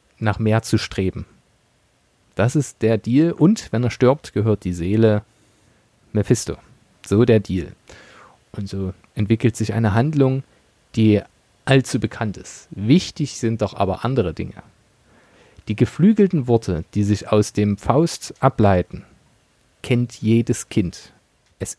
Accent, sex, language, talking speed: German, male, German, 130 wpm